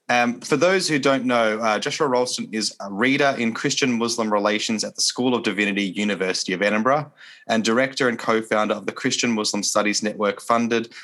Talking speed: 180 wpm